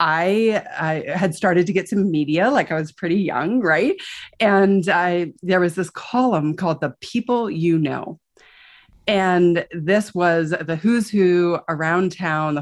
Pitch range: 165-210 Hz